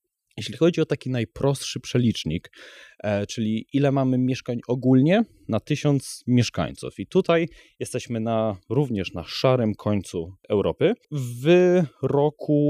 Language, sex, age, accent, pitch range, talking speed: Polish, male, 20-39, native, 110-140 Hz, 120 wpm